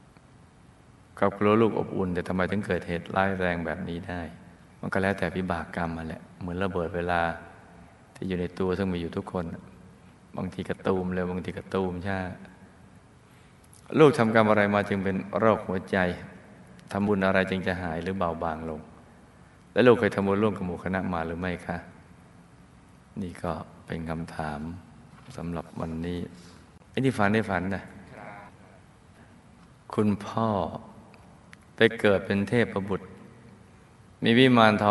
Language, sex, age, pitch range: Thai, male, 20-39, 85-100 Hz